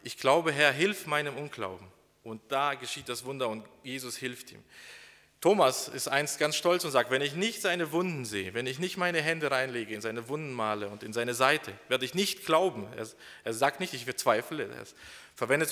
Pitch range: 120-150 Hz